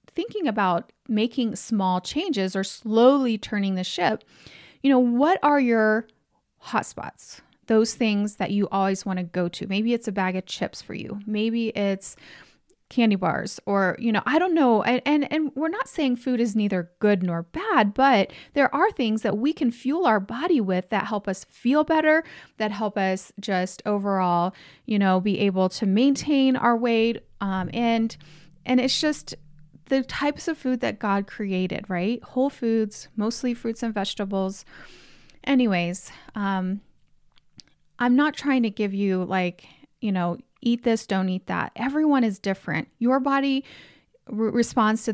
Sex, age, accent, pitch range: female, 30-49, American, 195-255 Hz